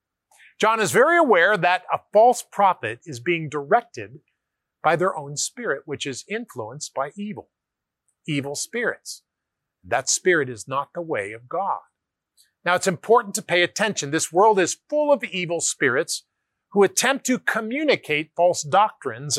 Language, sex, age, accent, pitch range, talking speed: English, male, 40-59, American, 135-175 Hz, 150 wpm